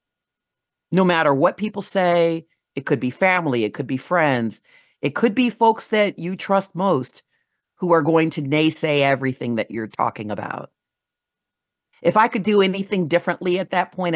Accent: American